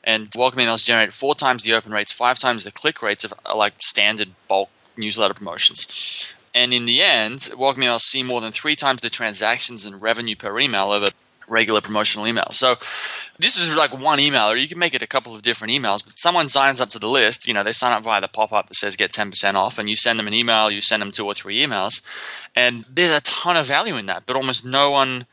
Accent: Australian